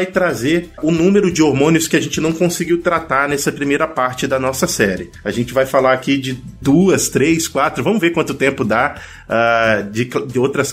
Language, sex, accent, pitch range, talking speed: Portuguese, male, Brazilian, 115-155 Hz, 190 wpm